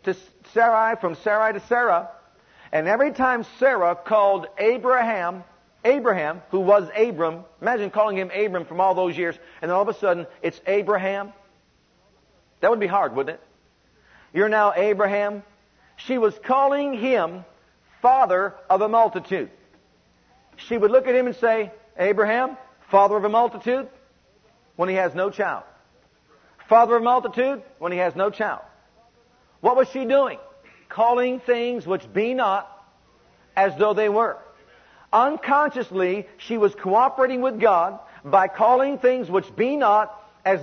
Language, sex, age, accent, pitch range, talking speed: English, male, 50-69, American, 195-245 Hz, 150 wpm